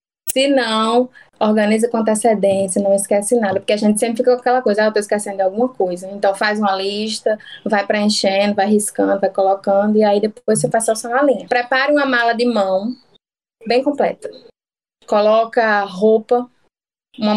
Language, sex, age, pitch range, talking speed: Portuguese, female, 10-29, 200-235 Hz, 175 wpm